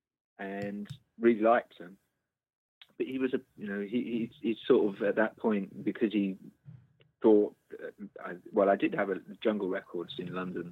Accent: British